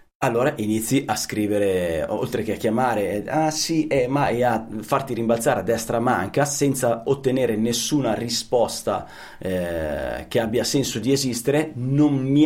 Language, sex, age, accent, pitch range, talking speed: Italian, male, 30-49, native, 105-140 Hz, 155 wpm